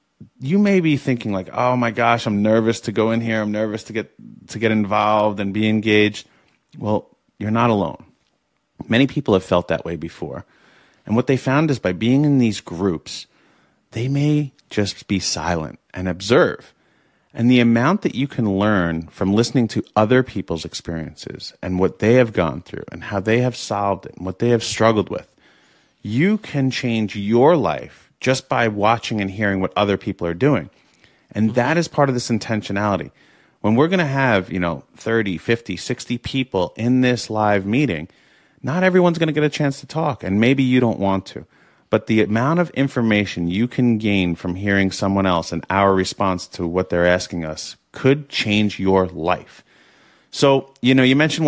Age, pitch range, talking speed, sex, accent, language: 30-49, 95-125 Hz, 190 wpm, male, American, English